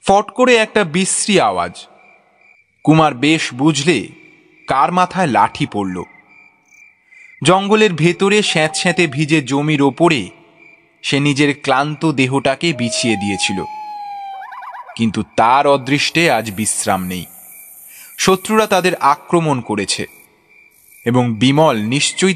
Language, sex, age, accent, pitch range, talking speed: Bengali, male, 30-49, native, 125-185 Hz, 100 wpm